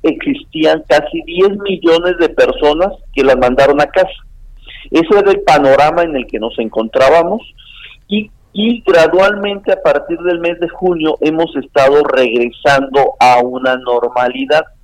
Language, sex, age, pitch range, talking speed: Spanish, male, 50-69, 135-190 Hz, 140 wpm